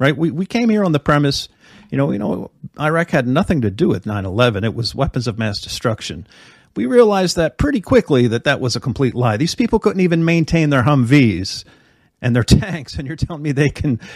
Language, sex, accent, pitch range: English, male, American, 110-145 Hz